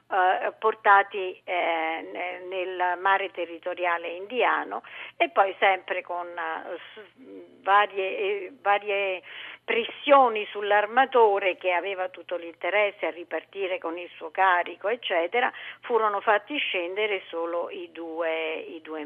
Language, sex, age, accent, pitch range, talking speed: Italian, female, 50-69, native, 175-225 Hz, 100 wpm